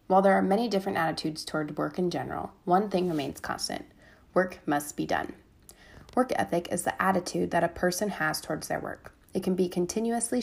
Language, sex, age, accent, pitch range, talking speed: English, female, 30-49, American, 155-205 Hz, 195 wpm